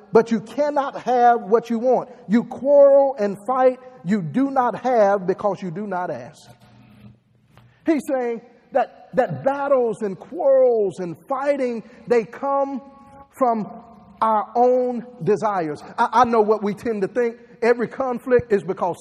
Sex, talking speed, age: male, 150 wpm, 50-69